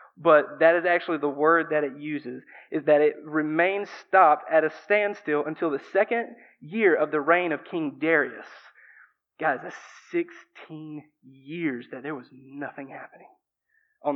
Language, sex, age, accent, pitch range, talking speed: English, male, 20-39, American, 155-210 Hz, 155 wpm